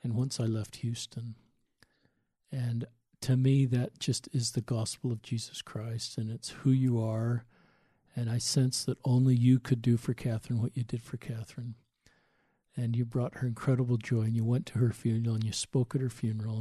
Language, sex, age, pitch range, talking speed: English, male, 50-69, 120-140 Hz, 195 wpm